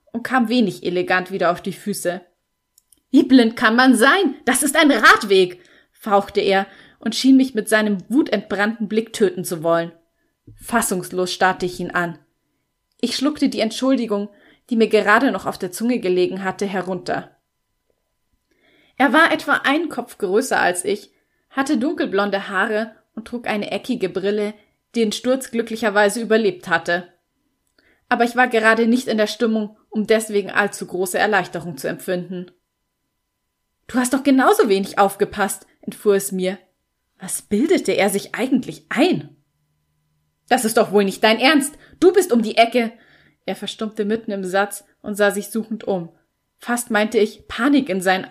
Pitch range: 190-240 Hz